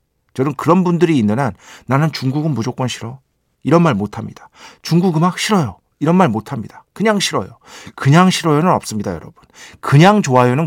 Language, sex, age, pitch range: Korean, male, 50-69, 110-165 Hz